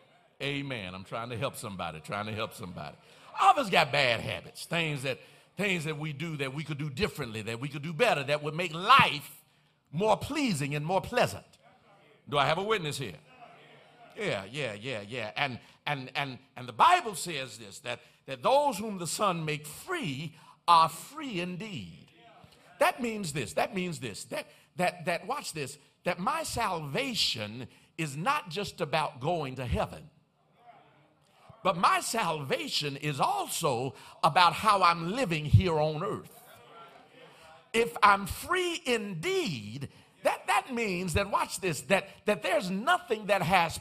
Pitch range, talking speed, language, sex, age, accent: 150-235 Hz, 160 wpm, English, male, 50-69, American